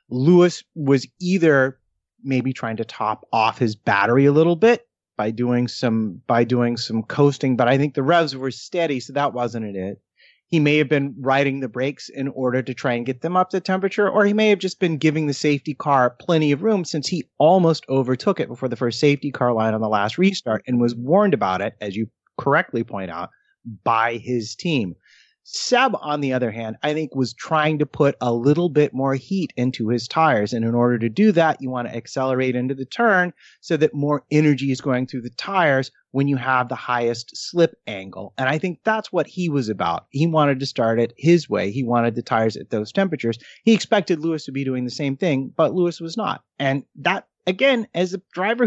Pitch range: 120-175 Hz